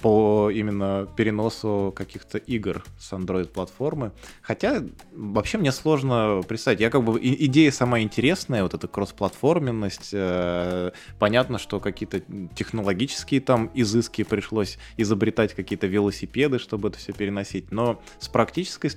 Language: Russian